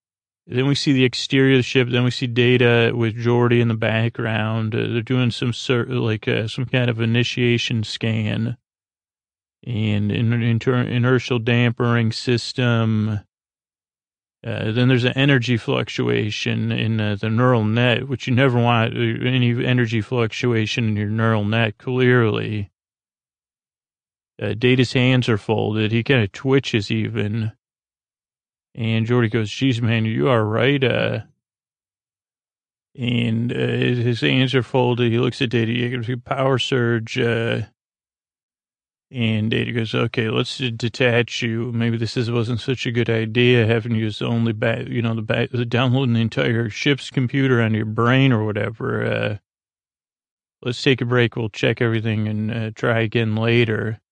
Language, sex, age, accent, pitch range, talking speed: English, male, 30-49, American, 110-125 Hz, 160 wpm